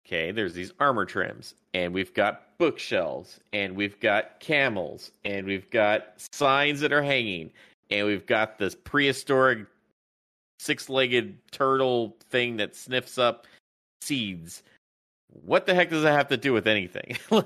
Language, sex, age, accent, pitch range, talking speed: English, male, 30-49, American, 105-140 Hz, 145 wpm